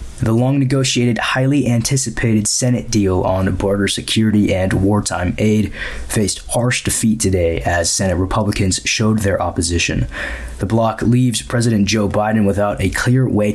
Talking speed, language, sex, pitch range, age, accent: 140 wpm, English, male, 95-115 Hz, 20-39, American